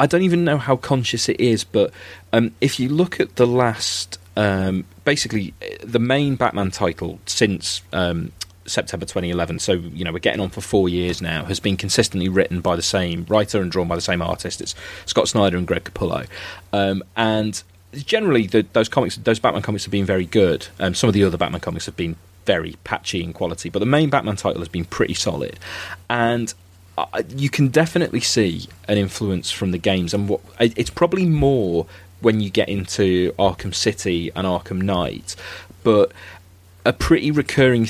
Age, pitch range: 30-49, 90-110 Hz